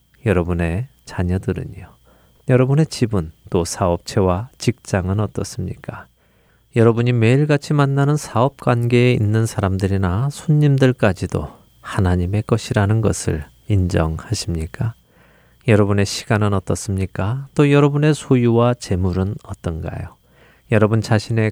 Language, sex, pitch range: Korean, male, 95-125 Hz